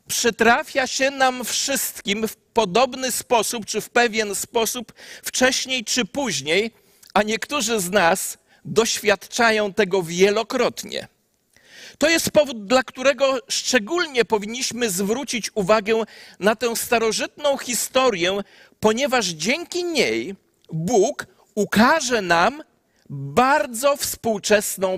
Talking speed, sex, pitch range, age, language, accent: 100 wpm, male, 215-275 Hz, 40-59, Polish, native